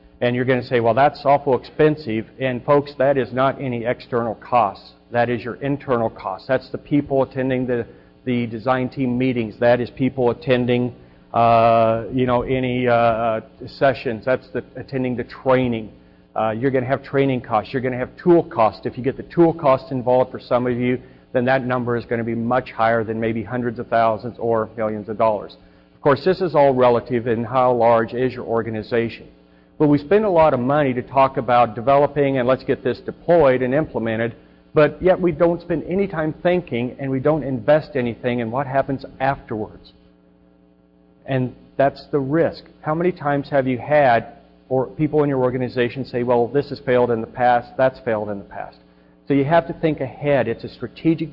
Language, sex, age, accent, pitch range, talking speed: English, male, 50-69, American, 115-140 Hz, 200 wpm